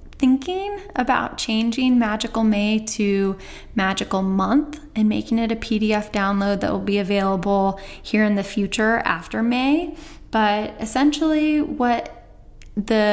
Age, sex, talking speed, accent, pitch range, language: 10-29, female, 130 wpm, American, 200-250 Hz, English